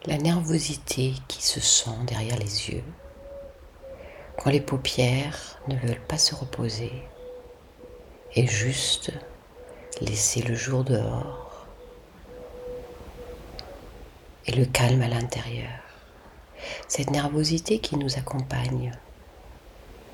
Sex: female